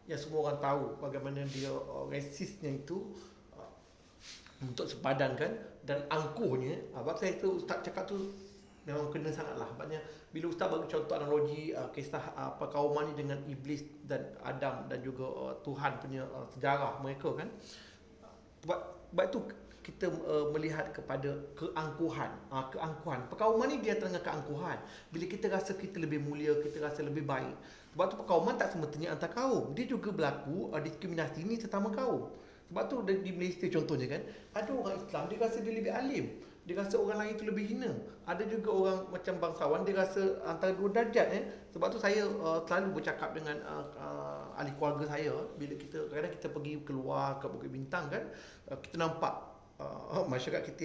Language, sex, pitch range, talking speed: Malay, male, 145-195 Hz, 165 wpm